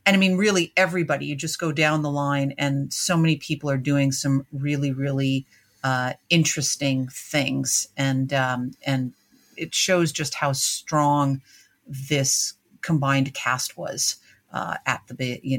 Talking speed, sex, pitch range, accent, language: 155 wpm, female, 140-185 Hz, American, English